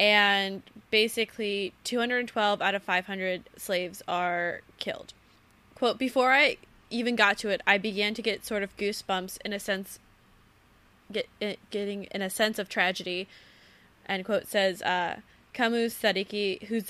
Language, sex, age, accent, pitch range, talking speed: English, female, 20-39, American, 185-220 Hz, 145 wpm